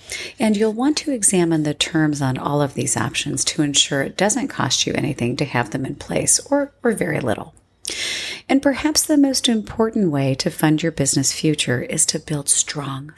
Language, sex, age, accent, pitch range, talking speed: English, female, 40-59, American, 145-200 Hz, 195 wpm